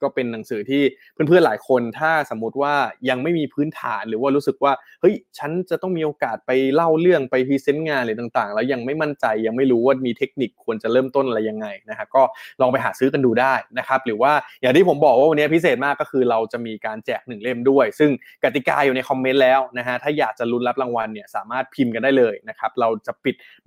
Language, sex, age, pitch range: Thai, male, 20-39, 120-155 Hz